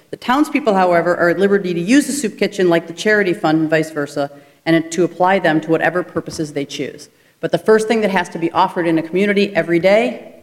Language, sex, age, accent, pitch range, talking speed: English, female, 40-59, American, 160-200 Hz, 235 wpm